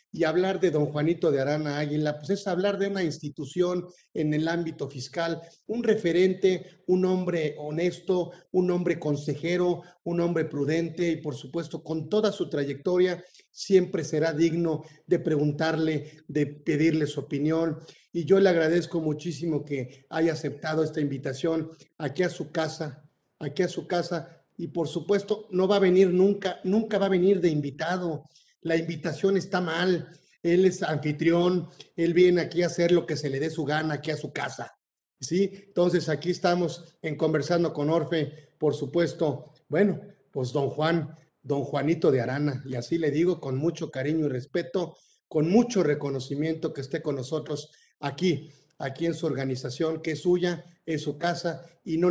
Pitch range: 150-180 Hz